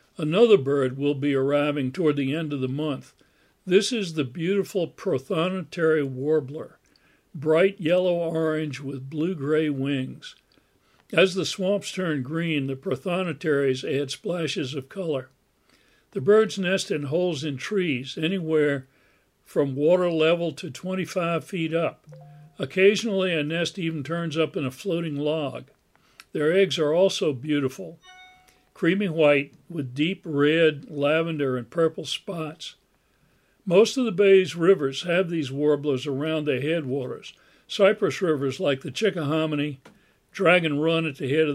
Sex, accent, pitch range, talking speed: male, American, 145-180 Hz, 135 wpm